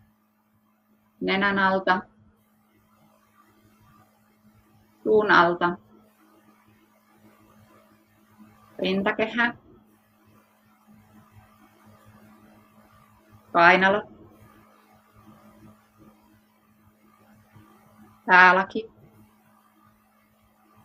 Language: Finnish